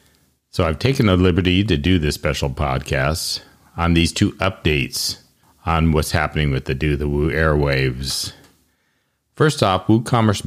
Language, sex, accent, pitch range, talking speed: English, male, American, 75-100 Hz, 150 wpm